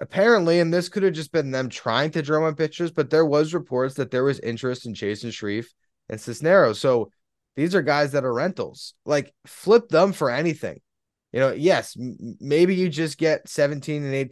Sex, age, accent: male, 20-39, American